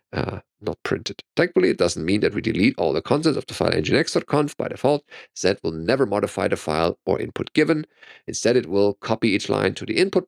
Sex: male